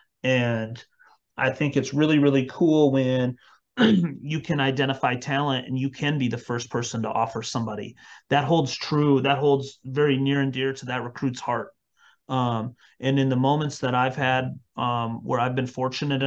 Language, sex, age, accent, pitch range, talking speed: English, male, 30-49, American, 125-145 Hz, 175 wpm